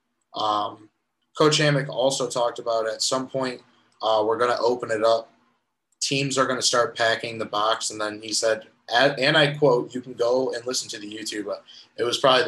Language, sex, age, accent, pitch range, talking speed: English, male, 20-39, American, 110-135 Hz, 200 wpm